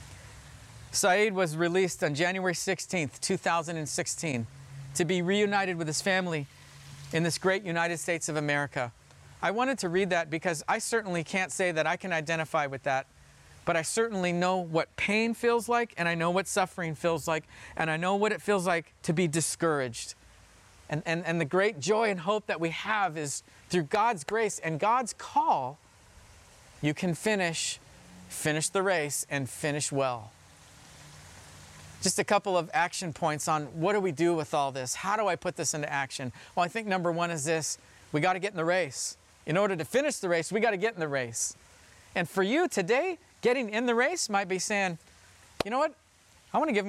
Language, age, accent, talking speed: English, 40-59, American, 195 wpm